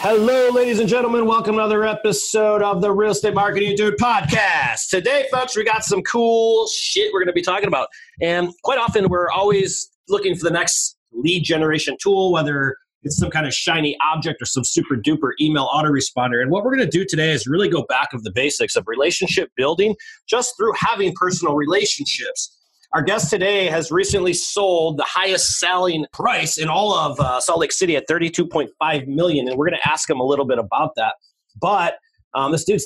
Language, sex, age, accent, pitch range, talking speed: English, male, 30-49, American, 145-210 Hz, 205 wpm